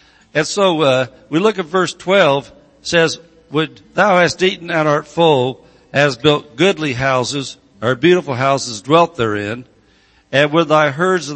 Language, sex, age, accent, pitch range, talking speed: English, male, 60-79, American, 135-170 Hz, 160 wpm